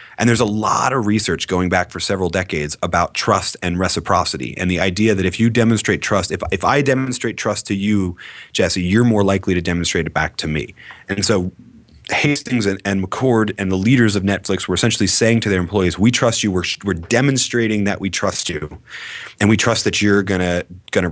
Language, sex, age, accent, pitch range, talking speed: English, male, 30-49, American, 90-110 Hz, 210 wpm